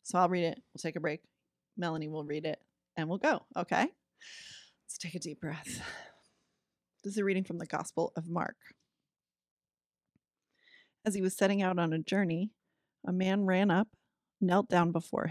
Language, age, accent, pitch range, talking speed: English, 30-49, American, 160-195 Hz, 175 wpm